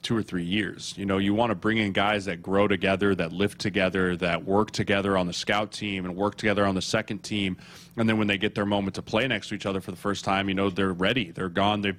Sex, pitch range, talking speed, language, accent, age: male, 100-115 Hz, 280 wpm, English, American, 20-39